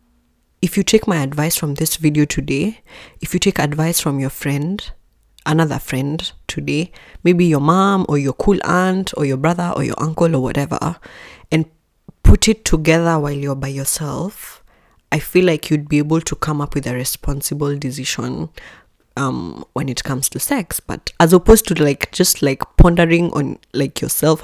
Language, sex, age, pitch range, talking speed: English, female, 20-39, 145-185 Hz, 175 wpm